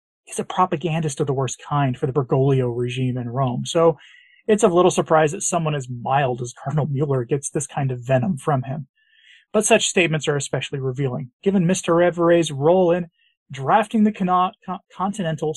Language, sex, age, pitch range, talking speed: English, male, 30-49, 135-180 Hz, 175 wpm